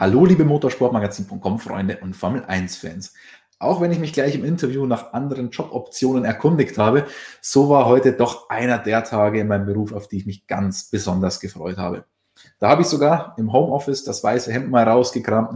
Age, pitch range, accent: 20-39, 105-130 Hz, German